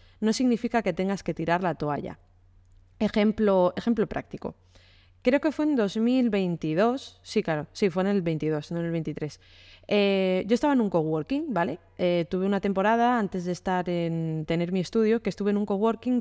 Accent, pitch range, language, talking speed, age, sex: Spanish, 170-230 Hz, Spanish, 185 wpm, 20-39, female